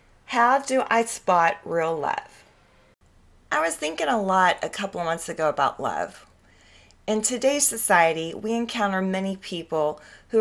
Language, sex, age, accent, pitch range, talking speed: English, female, 30-49, American, 180-240 Hz, 150 wpm